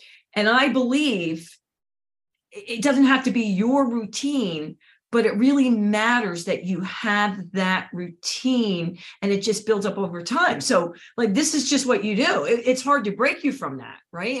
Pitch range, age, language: 175-235 Hz, 40-59, English